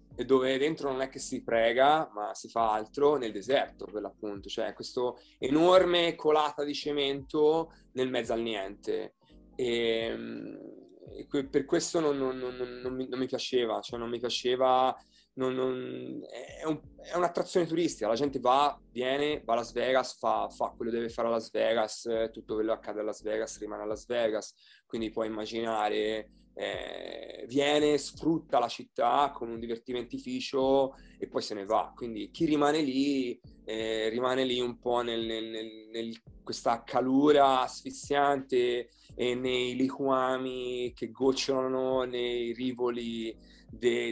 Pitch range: 115-145 Hz